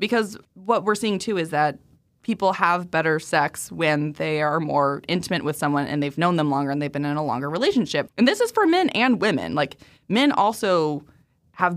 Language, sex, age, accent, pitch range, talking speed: English, female, 20-39, American, 150-190 Hz, 210 wpm